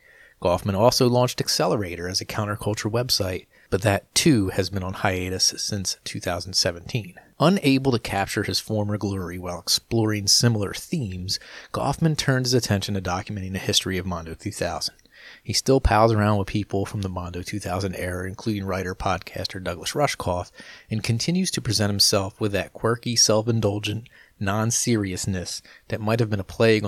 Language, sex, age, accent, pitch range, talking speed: English, male, 30-49, American, 95-115 Hz, 155 wpm